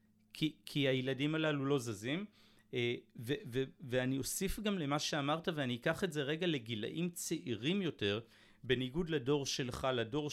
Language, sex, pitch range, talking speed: Hebrew, male, 120-165 Hz, 145 wpm